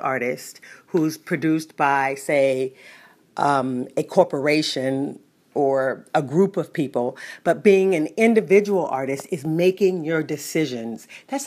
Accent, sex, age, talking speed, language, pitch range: American, female, 40-59, 120 wpm, English, 150-200 Hz